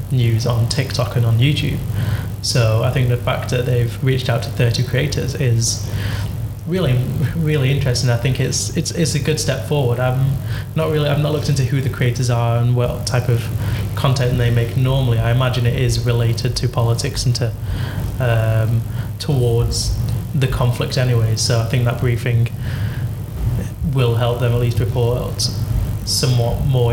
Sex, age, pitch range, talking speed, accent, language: male, 20-39, 115-125 Hz, 170 wpm, British, English